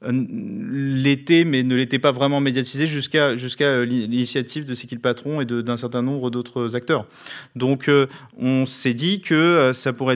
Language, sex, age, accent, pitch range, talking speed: French, male, 40-59, French, 125-150 Hz, 175 wpm